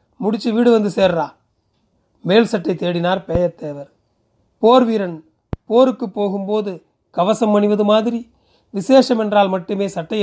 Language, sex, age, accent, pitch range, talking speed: Tamil, male, 40-59, native, 160-210 Hz, 110 wpm